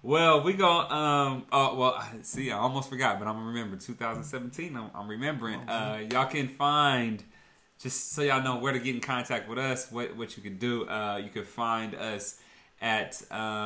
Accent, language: American, English